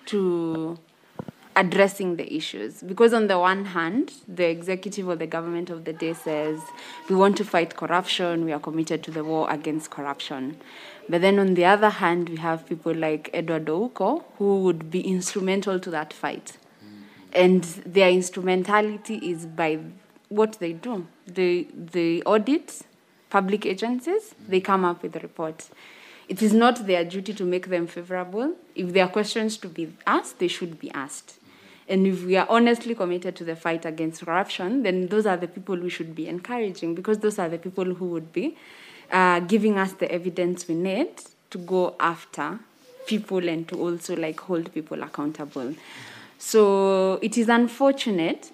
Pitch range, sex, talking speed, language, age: 170-210 Hz, female, 170 wpm, Swahili, 20-39